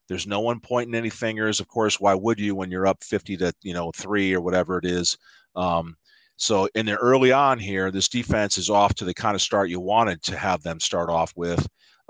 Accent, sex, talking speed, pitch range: American, male, 240 wpm, 95-120 Hz